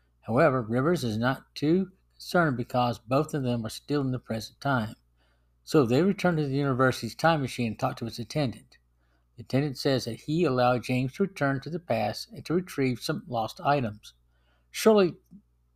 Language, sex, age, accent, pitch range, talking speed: English, male, 60-79, American, 110-150 Hz, 185 wpm